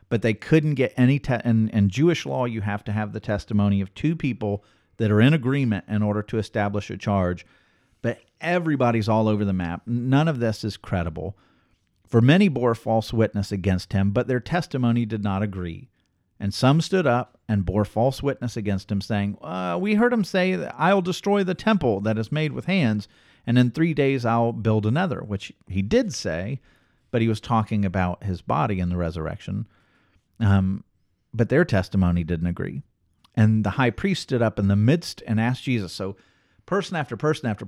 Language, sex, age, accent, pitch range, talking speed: English, male, 50-69, American, 100-130 Hz, 195 wpm